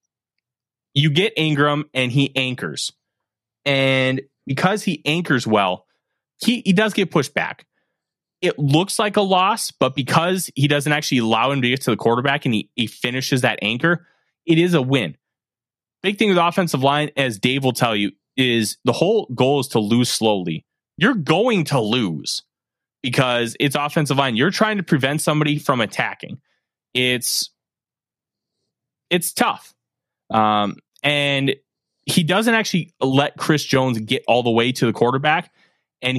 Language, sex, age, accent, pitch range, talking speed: English, male, 20-39, American, 130-180 Hz, 160 wpm